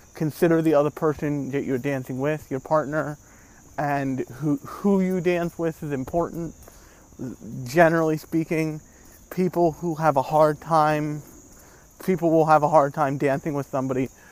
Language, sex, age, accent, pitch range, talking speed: English, male, 30-49, American, 130-155 Hz, 145 wpm